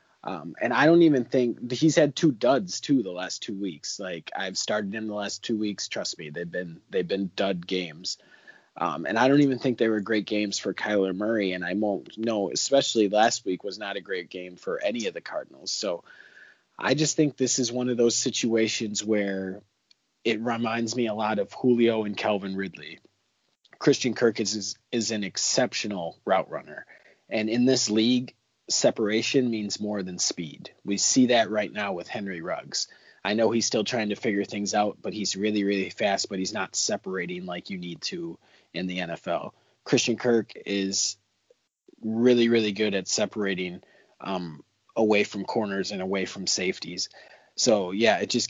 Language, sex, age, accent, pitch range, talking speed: English, male, 30-49, American, 100-120 Hz, 190 wpm